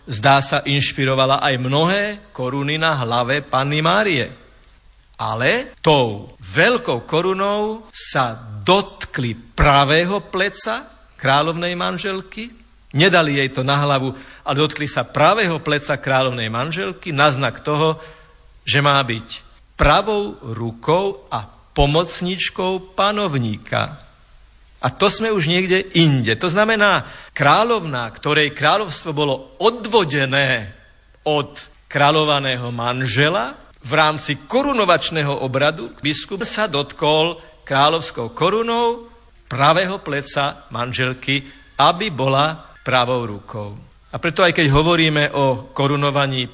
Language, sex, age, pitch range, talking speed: Slovak, male, 50-69, 130-175 Hz, 105 wpm